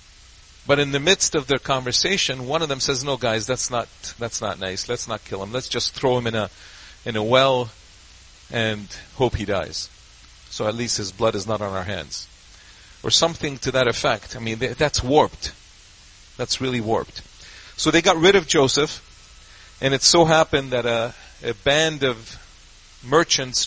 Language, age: English, 40-59